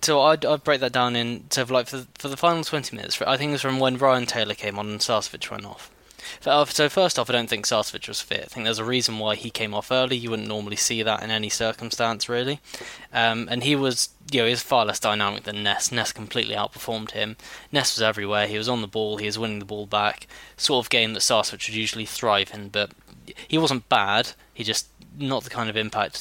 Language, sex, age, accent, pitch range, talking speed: English, male, 10-29, British, 105-130 Hz, 245 wpm